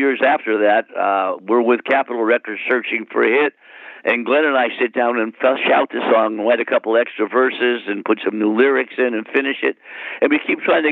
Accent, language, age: American, English, 60-79